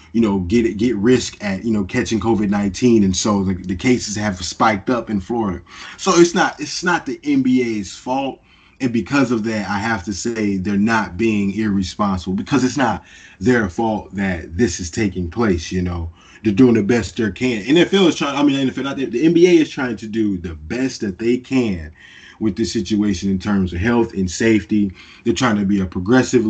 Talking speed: 210 wpm